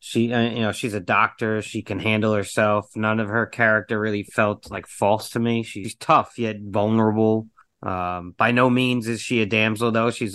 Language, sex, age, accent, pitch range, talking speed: English, male, 30-49, American, 100-130 Hz, 195 wpm